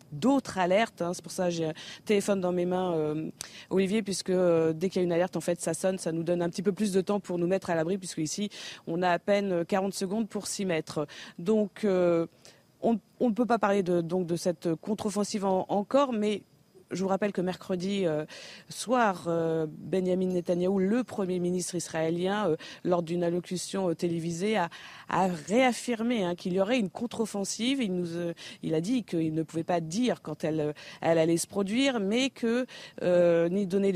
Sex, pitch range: female, 170-210 Hz